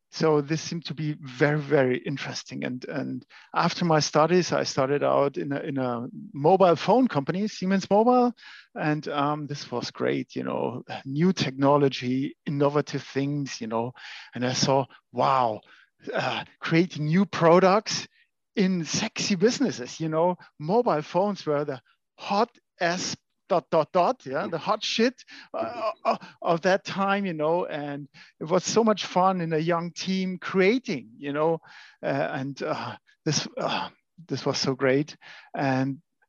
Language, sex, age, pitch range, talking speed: English, male, 50-69, 145-190 Hz, 155 wpm